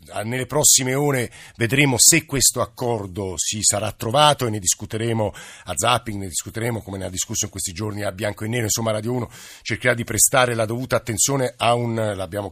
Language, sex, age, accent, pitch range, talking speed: Italian, male, 50-69, native, 105-130 Hz, 190 wpm